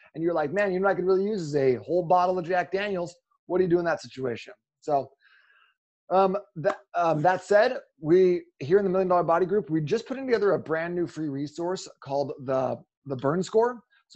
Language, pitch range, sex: English, 145-190 Hz, male